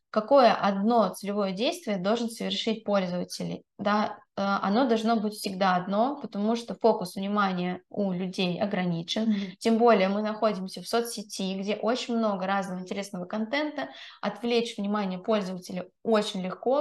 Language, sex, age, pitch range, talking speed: Russian, female, 20-39, 195-230 Hz, 130 wpm